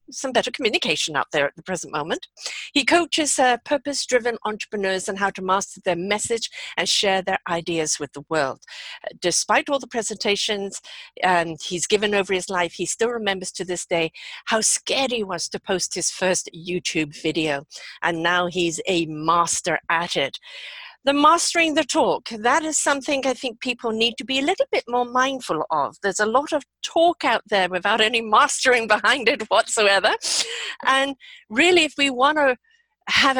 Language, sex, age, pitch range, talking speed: English, female, 50-69, 180-270 Hz, 180 wpm